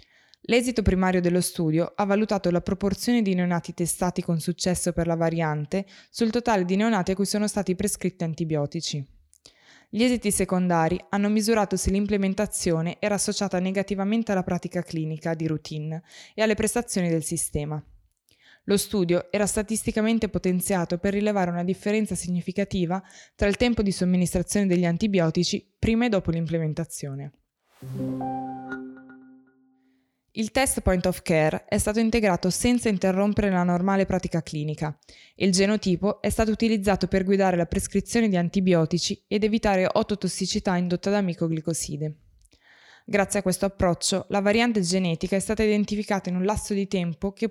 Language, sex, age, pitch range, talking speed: Italian, female, 20-39, 170-205 Hz, 145 wpm